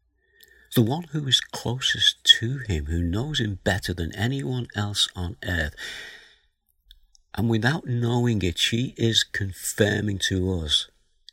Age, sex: 60-79, male